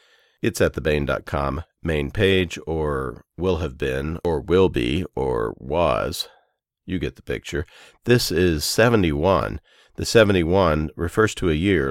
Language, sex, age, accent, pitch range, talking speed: English, male, 50-69, American, 75-95 Hz, 140 wpm